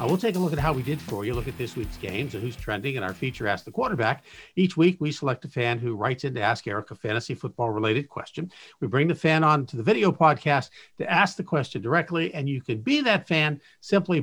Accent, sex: American, male